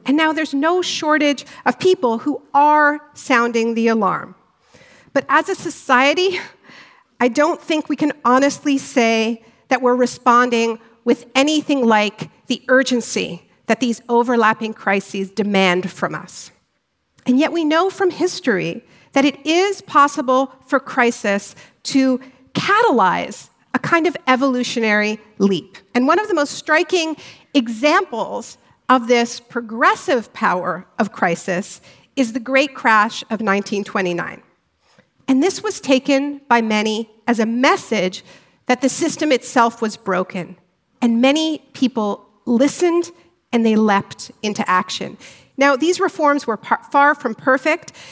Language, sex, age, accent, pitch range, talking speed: English, female, 50-69, American, 225-290 Hz, 135 wpm